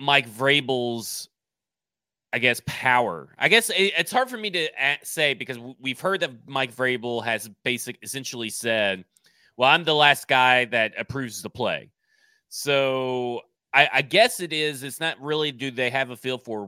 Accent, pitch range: American, 110-140 Hz